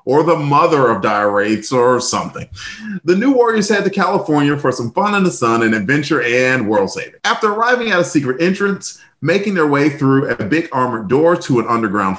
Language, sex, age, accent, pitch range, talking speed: English, male, 40-59, American, 125-200 Hz, 200 wpm